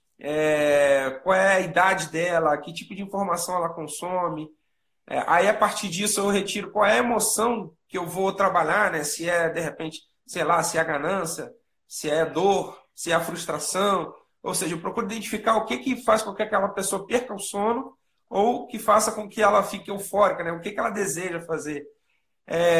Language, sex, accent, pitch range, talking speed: Portuguese, male, Brazilian, 170-215 Hz, 205 wpm